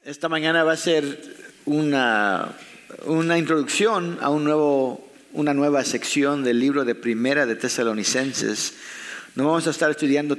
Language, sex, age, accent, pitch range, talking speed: English, male, 50-69, Mexican, 110-145 Hz, 145 wpm